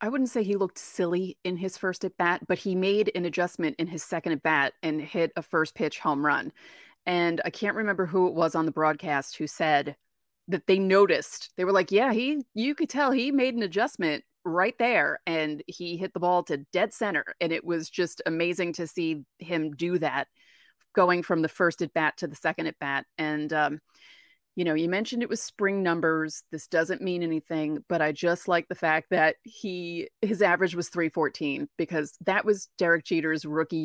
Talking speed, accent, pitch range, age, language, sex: 210 wpm, American, 165-205 Hz, 30-49, English, female